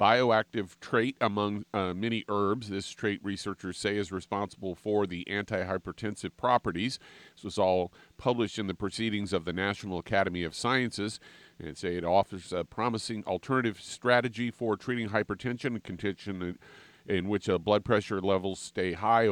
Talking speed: 160 wpm